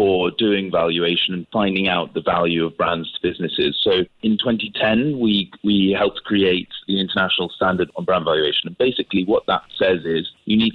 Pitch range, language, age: 90-110 Hz, English, 20-39